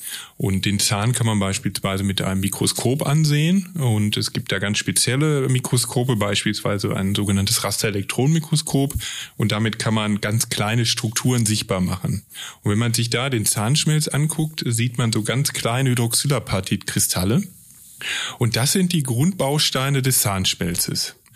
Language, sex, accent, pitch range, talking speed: German, male, German, 110-140 Hz, 145 wpm